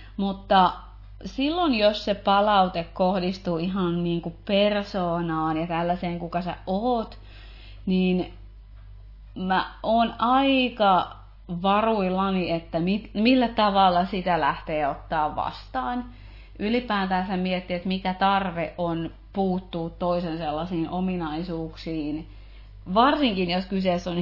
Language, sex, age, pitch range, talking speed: Finnish, female, 30-49, 160-205 Hz, 100 wpm